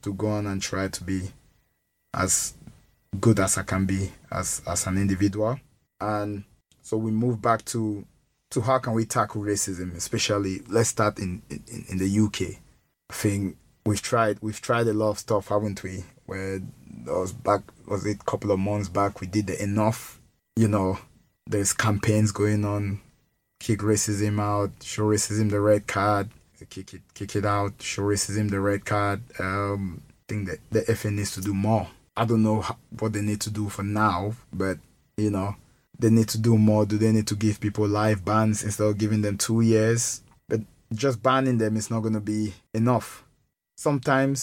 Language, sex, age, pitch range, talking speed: English, male, 20-39, 100-115 Hz, 190 wpm